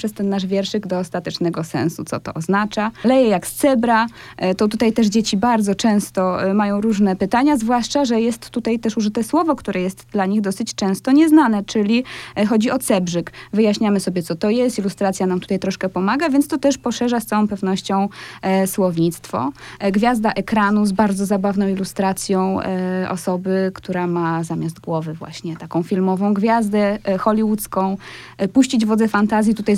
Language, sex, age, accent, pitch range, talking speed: Polish, female, 20-39, native, 190-245 Hz, 160 wpm